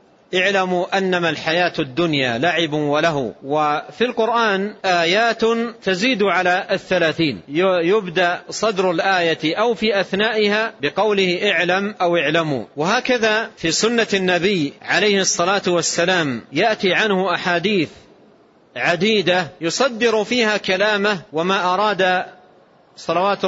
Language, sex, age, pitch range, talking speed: Arabic, male, 40-59, 175-210 Hz, 100 wpm